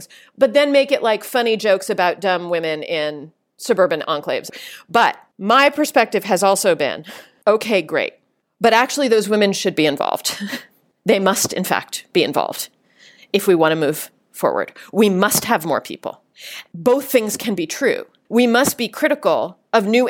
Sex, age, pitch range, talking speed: female, 40-59, 205-275 Hz, 165 wpm